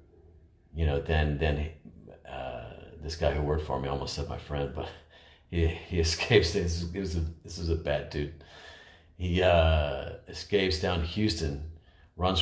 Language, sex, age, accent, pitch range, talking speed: English, male, 40-59, American, 80-95 Hz, 170 wpm